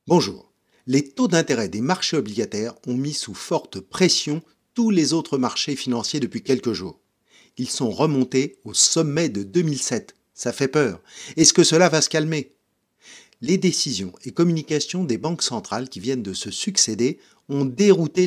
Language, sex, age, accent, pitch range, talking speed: French, male, 50-69, French, 130-185 Hz, 165 wpm